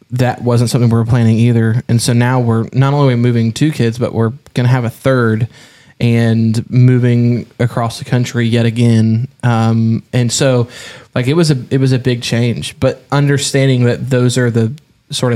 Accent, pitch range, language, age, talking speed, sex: American, 115-130 Hz, English, 20-39, 195 wpm, male